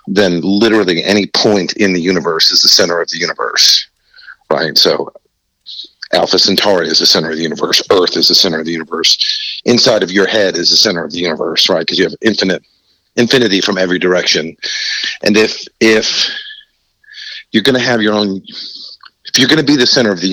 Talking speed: 200 wpm